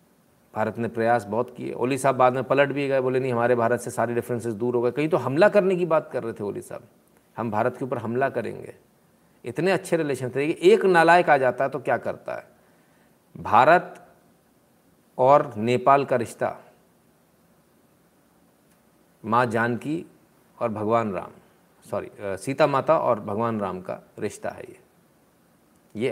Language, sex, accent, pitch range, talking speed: Hindi, male, native, 120-155 Hz, 170 wpm